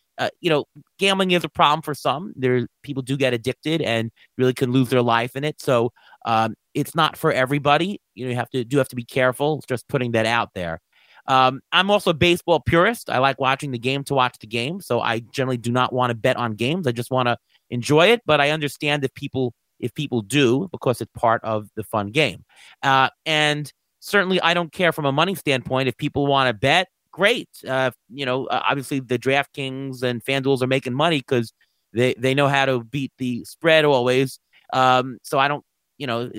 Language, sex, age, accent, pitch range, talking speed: English, male, 30-49, American, 125-150 Hz, 220 wpm